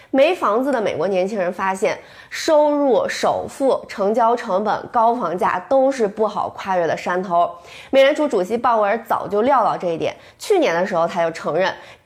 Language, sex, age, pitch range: Chinese, female, 20-39, 190-270 Hz